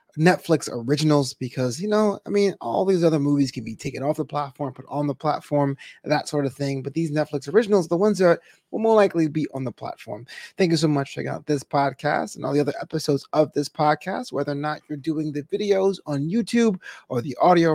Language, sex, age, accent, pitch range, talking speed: English, male, 20-39, American, 140-175 Hz, 230 wpm